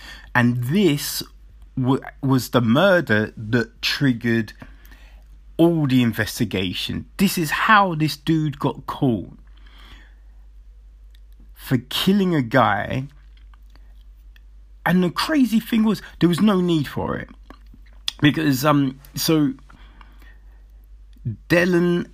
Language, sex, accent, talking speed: English, male, British, 100 wpm